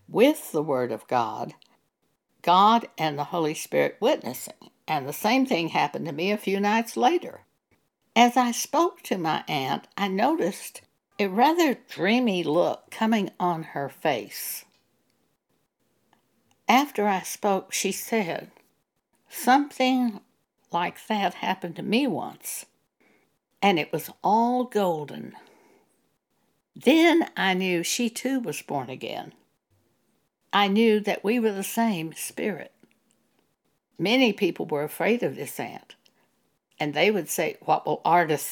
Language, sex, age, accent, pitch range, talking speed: English, female, 60-79, American, 175-250 Hz, 130 wpm